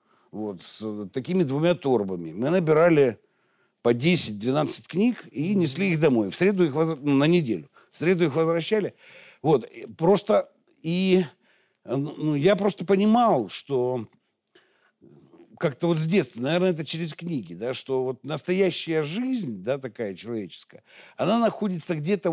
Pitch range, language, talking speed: 135-185 Hz, Russian, 140 wpm